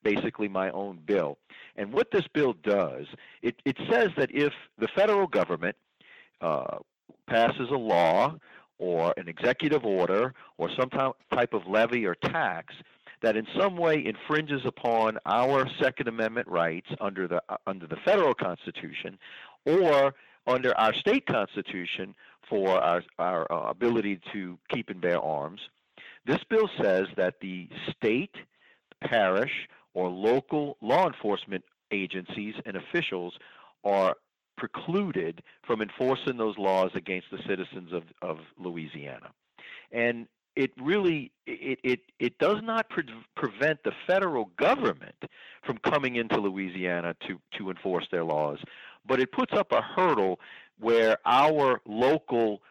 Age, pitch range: 50-69, 95-140 Hz